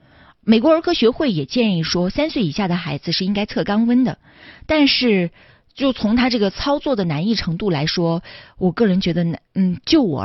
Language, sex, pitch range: Chinese, female, 170-230 Hz